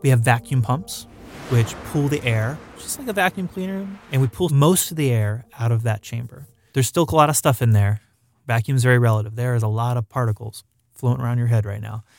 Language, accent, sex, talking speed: English, American, male, 230 wpm